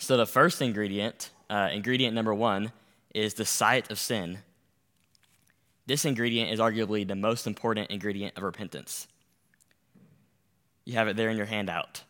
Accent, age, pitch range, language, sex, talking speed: American, 10-29, 100-120 Hz, English, male, 150 wpm